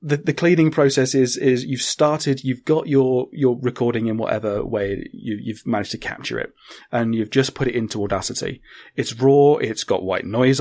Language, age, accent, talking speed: English, 30-49, British, 200 wpm